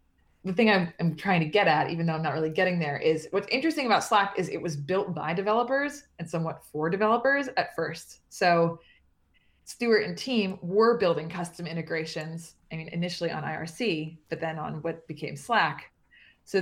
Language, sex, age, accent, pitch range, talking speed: English, female, 20-39, American, 160-195 Hz, 185 wpm